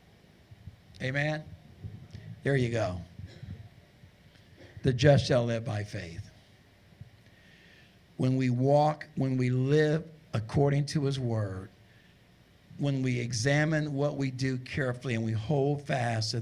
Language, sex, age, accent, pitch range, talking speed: English, male, 50-69, American, 125-165 Hz, 115 wpm